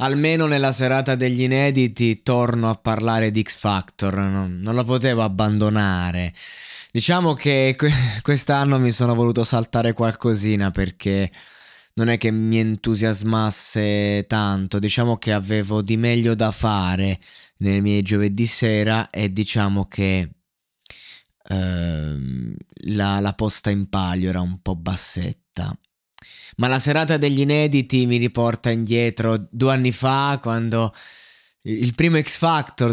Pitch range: 110-135 Hz